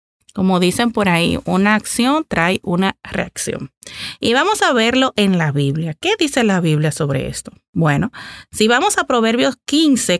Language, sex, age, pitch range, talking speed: Spanish, female, 30-49, 175-230 Hz, 165 wpm